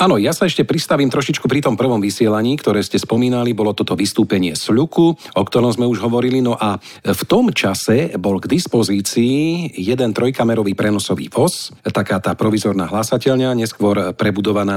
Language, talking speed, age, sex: Slovak, 165 wpm, 40-59, male